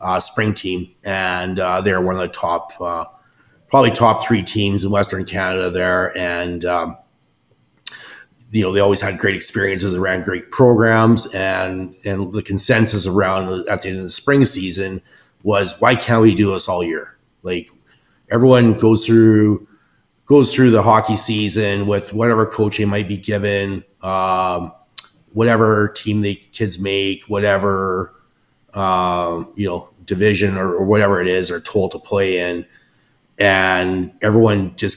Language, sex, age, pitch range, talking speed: English, male, 30-49, 95-105 Hz, 160 wpm